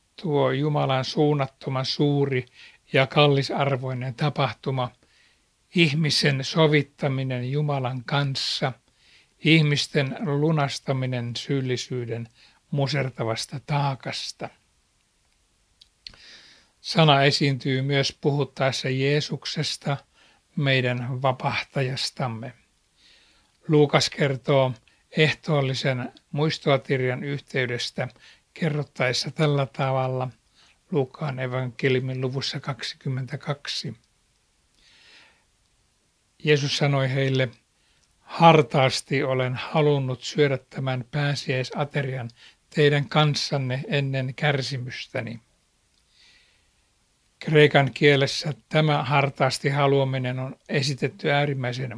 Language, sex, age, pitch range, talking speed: Finnish, male, 60-79, 130-145 Hz, 65 wpm